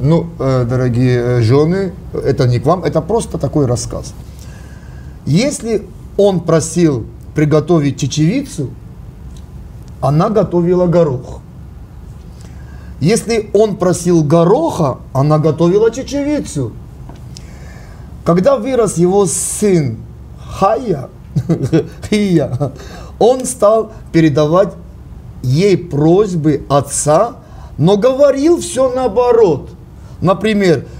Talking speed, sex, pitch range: 85 wpm, male, 130-195 Hz